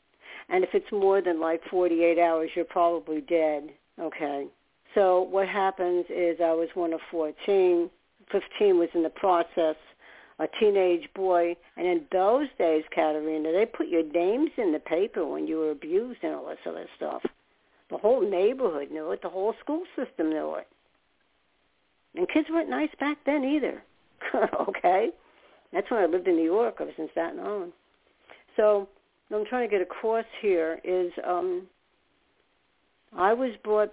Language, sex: English, female